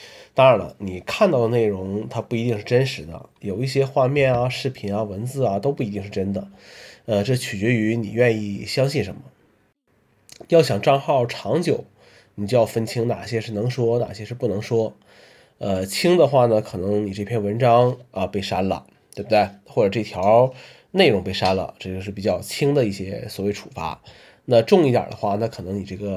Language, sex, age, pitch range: Chinese, male, 20-39, 100-125 Hz